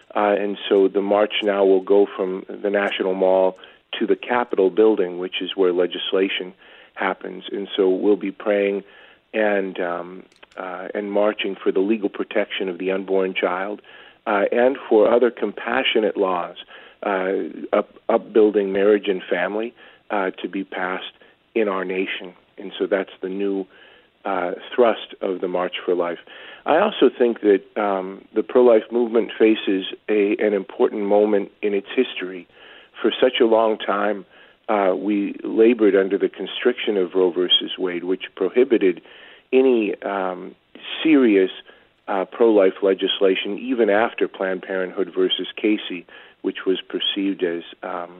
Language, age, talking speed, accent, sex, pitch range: English, 50-69, 150 wpm, American, male, 95-115 Hz